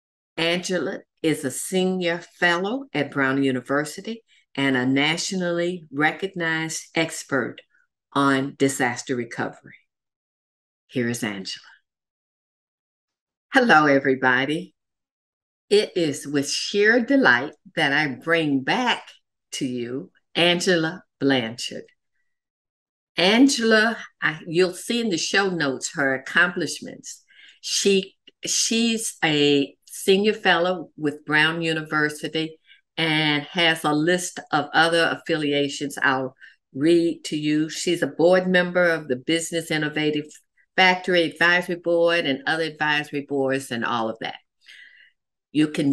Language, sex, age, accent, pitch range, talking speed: English, female, 50-69, American, 140-185 Hz, 110 wpm